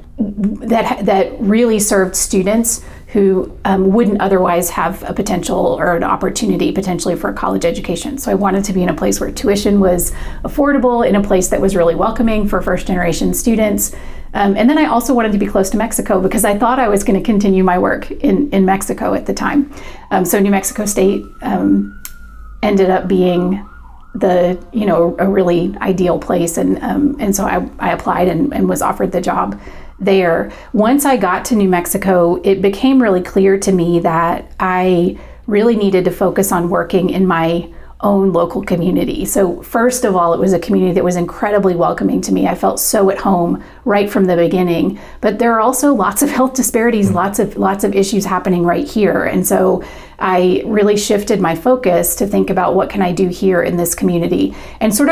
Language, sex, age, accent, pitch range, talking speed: English, female, 30-49, American, 180-215 Hz, 200 wpm